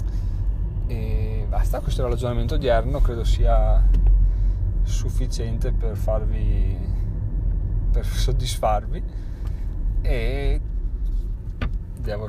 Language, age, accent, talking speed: Italian, 30-49, native, 75 wpm